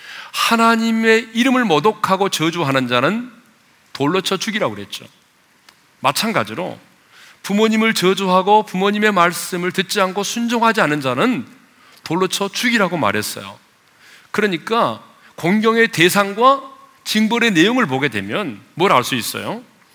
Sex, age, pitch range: male, 40-59, 185-250 Hz